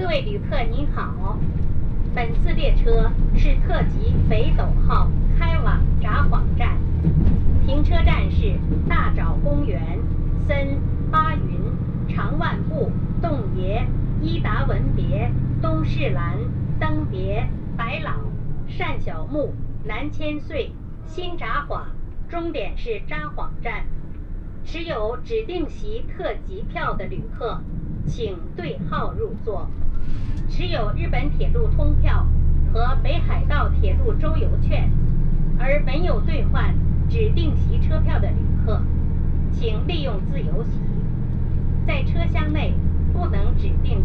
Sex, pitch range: female, 80-115 Hz